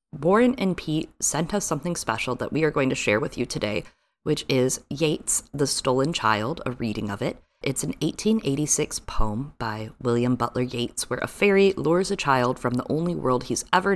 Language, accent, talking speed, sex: English, American, 200 wpm, female